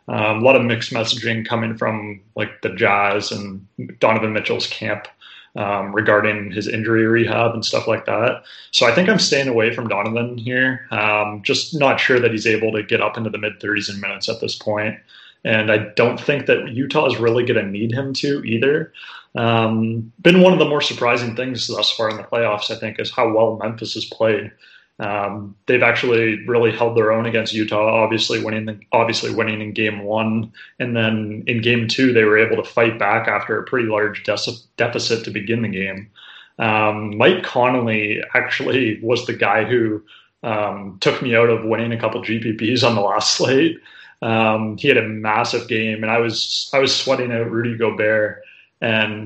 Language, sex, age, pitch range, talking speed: English, male, 30-49, 105-115 Hz, 195 wpm